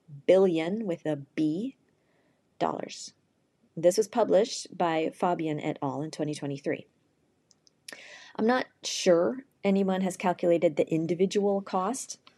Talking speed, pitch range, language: 110 wpm, 155-205 Hz, English